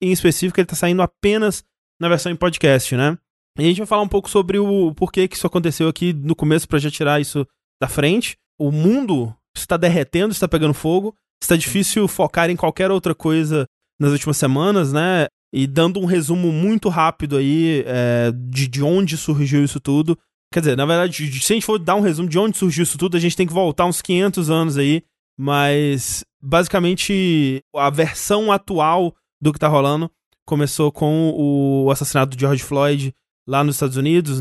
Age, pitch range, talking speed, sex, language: 20-39, 140-175 Hz, 190 wpm, male, Portuguese